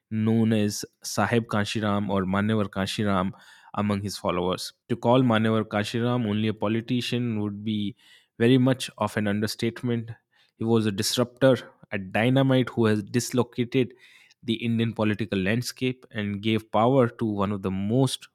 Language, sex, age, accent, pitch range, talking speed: Hindi, male, 20-39, native, 100-120 Hz, 155 wpm